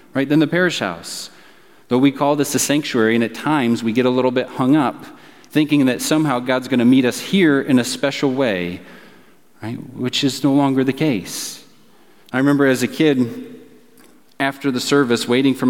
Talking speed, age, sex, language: 190 wpm, 30-49, male, English